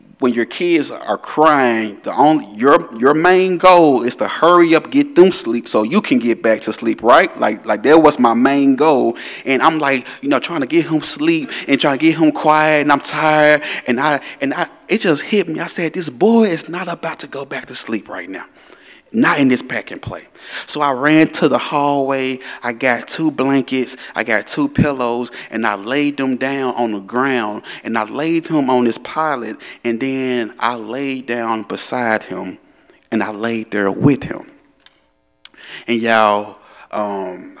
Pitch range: 115-150 Hz